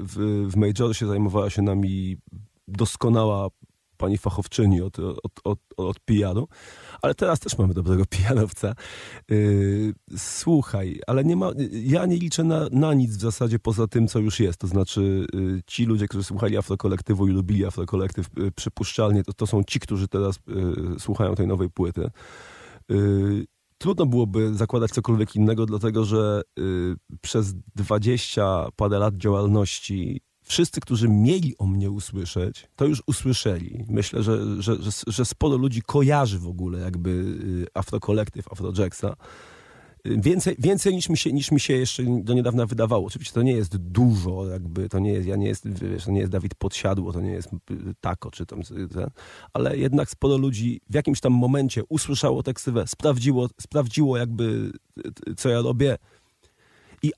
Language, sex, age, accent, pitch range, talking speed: Polish, male, 30-49, native, 95-120 Hz, 160 wpm